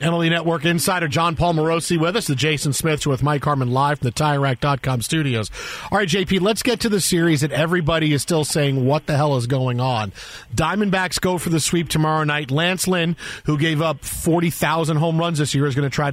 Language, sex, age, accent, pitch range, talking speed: English, male, 40-59, American, 150-185 Hz, 225 wpm